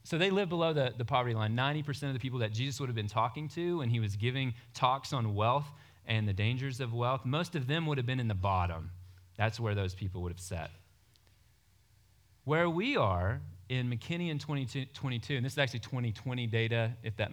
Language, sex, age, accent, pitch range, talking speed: English, male, 30-49, American, 95-125 Hz, 215 wpm